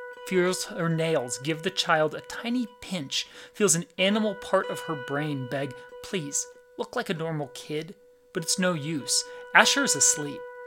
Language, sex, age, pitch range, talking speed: English, male, 30-49, 145-185 Hz, 170 wpm